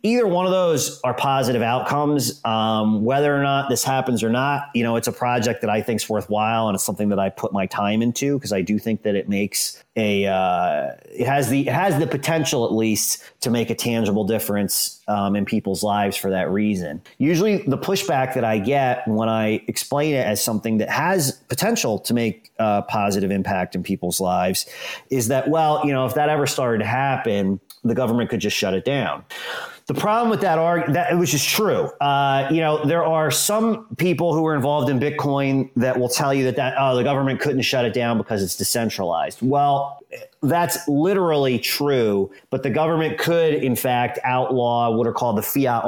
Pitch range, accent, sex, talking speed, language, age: 105-145 Hz, American, male, 205 wpm, English, 30-49